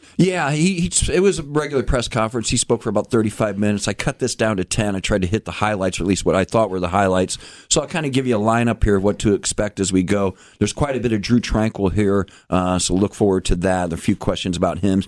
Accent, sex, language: American, male, English